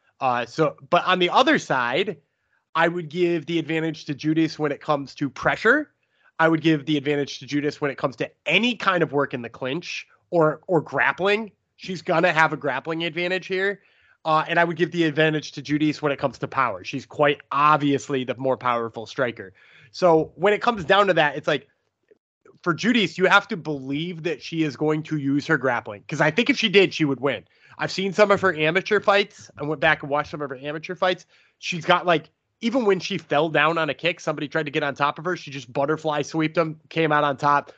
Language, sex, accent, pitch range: English, male, American, 145-180 Hz